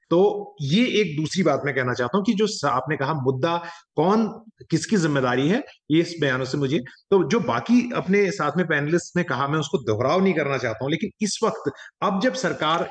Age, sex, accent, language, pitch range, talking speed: 30-49, male, native, Hindi, 135-190 Hz, 205 wpm